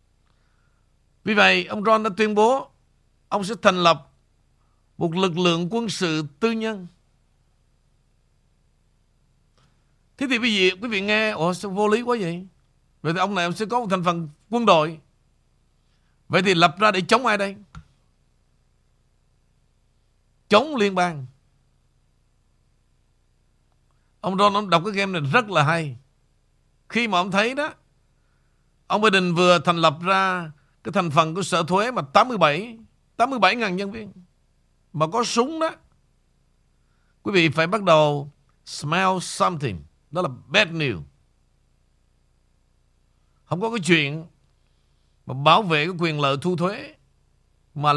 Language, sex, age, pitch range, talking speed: Vietnamese, male, 60-79, 145-205 Hz, 145 wpm